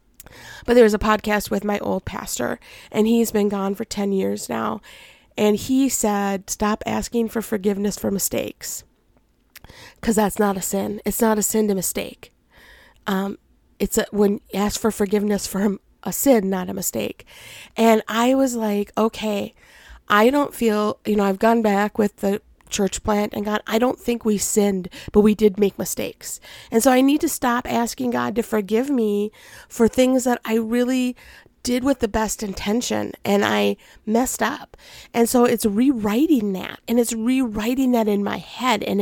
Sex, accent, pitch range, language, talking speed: female, American, 205-235 Hz, English, 180 wpm